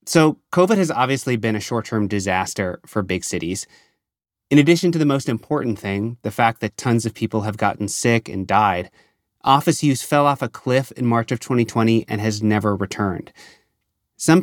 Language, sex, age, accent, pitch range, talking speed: English, male, 30-49, American, 110-140 Hz, 185 wpm